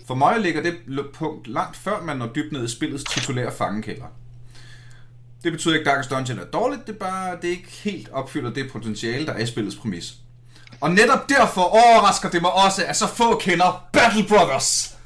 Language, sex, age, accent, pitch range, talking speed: Danish, male, 30-49, native, 120-170 Hz, 200 wpm